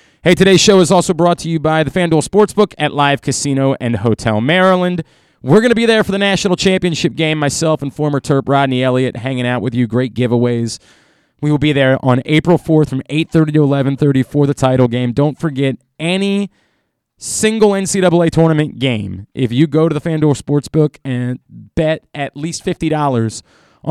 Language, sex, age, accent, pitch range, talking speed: English, male, 30-49, American, 130-165 Hz, 185 wpm